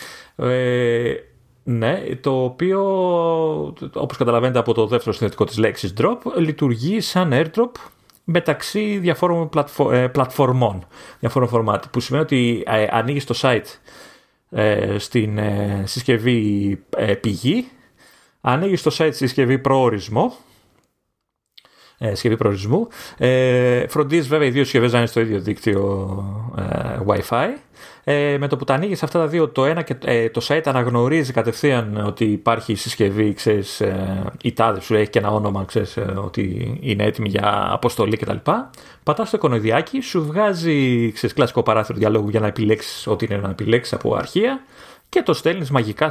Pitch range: 110-150 Hz